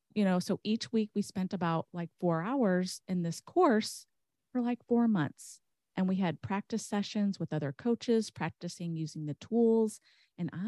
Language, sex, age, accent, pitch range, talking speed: English, female, 30-49, American, 160-210 Hz, 175 wpm